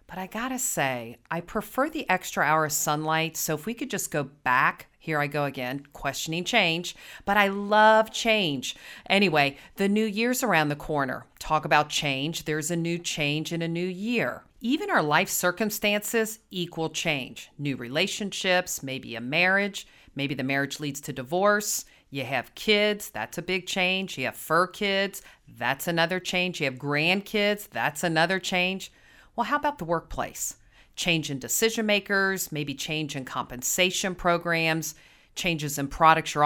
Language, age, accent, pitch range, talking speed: English, 40-59, American, 150-195 Hz, 165 wpm